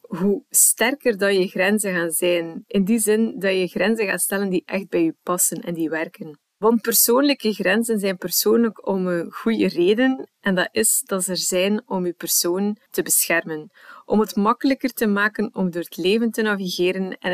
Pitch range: 185-225 Hz